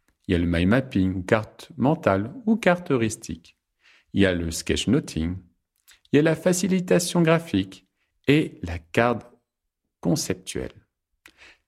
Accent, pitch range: French, 95-135 Hz